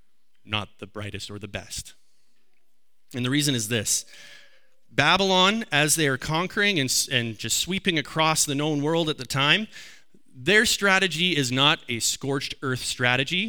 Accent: American